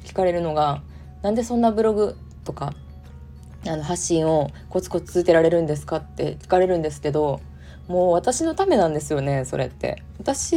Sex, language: female, Japanese